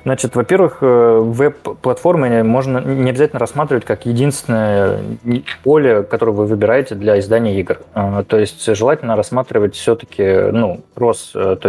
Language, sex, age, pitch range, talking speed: Russian, male, 20-39, 105-130 Hz, 125 wpm